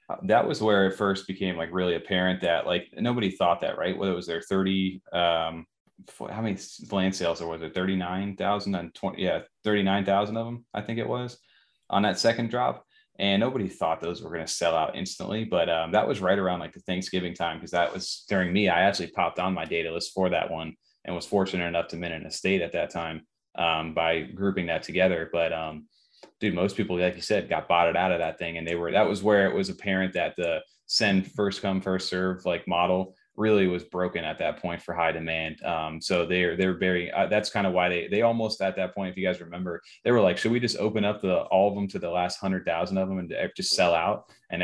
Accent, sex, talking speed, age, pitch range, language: American, male, 240 wpm, 20-39, 85-100 Hz, English